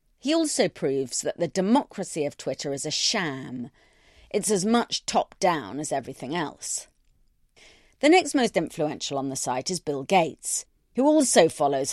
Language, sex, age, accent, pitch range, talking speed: English, female, 40-59, British, 150-205 Hz, 155 wpm